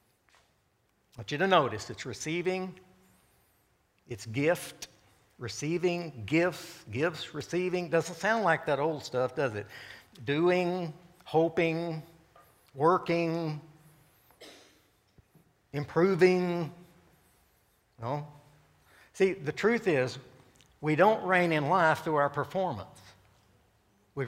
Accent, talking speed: American, 95 wpm